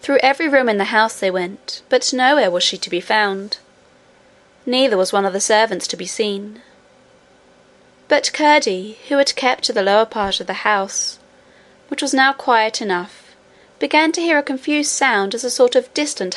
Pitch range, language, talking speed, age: 200-265 Hz, English, 190 wpm, 20-39